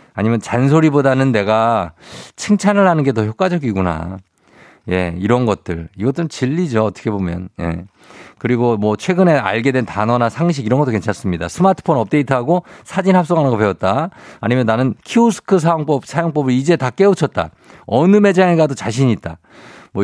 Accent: native